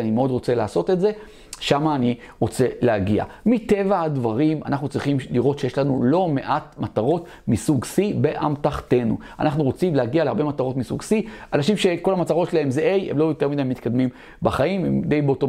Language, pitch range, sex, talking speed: Hebrew, 120-155 Hz, male, 175 wpm